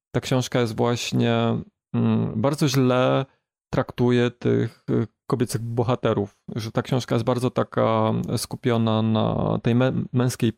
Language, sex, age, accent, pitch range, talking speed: Polish, male, 30-49, native, 115-135 Hz, 120 wpm